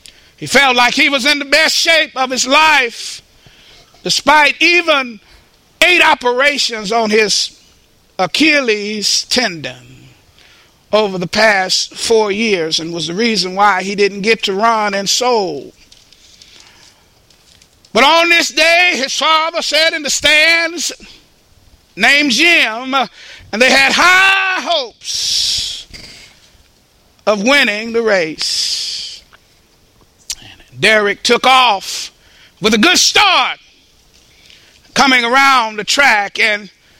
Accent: American